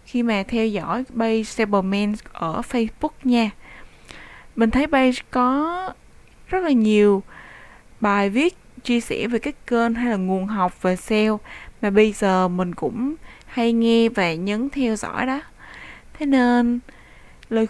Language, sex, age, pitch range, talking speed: Vietnamese, female, 20-39, 200-260 Hz, 150 wpm